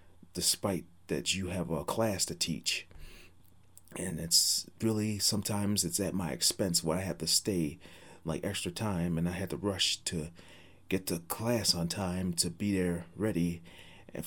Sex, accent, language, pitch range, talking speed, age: male, American, English, 85-100 Hz, 170 wpm, 30-49